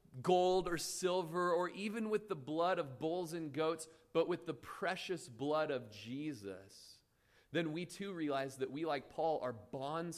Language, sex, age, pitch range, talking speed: English, male, 30-49, 130-180 Hz, 170 wpm